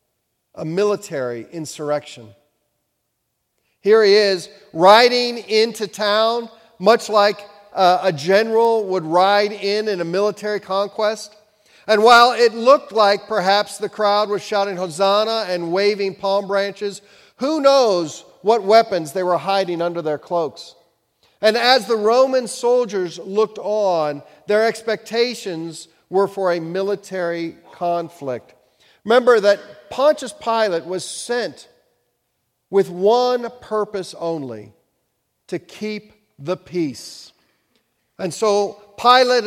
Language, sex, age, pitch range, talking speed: English, male, 50-69, 165-215 Hz, 115 wpm